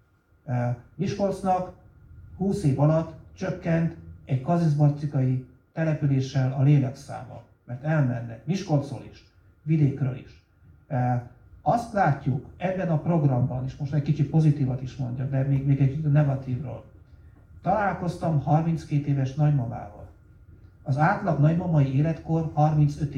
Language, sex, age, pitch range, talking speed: Hungarian, male, 60-79, 120-155 Hz, 115 wpm